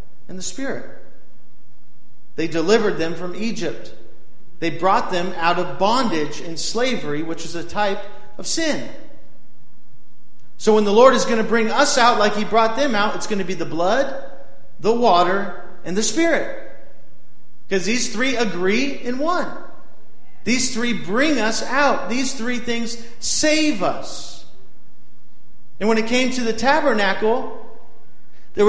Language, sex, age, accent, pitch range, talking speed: English, male, 40-59, American, 155-235 Hz, 150 wpm